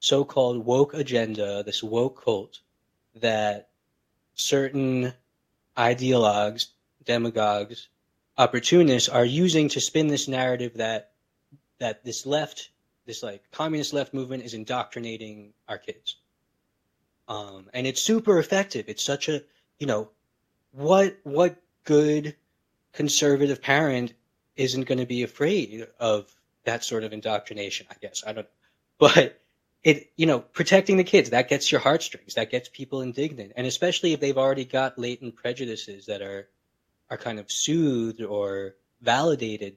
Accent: American